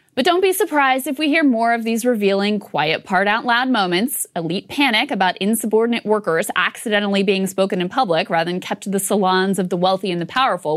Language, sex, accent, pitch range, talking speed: English, female, American, 190-280 Hz, 200 wpm